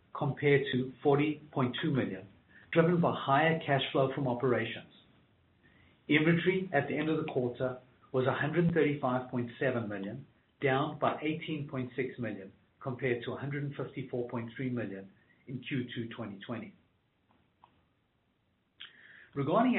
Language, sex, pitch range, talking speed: English, male, 120-150 Hz, 100 wpm